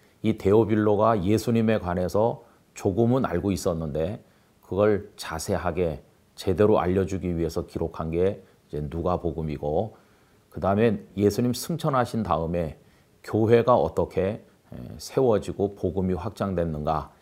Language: Korean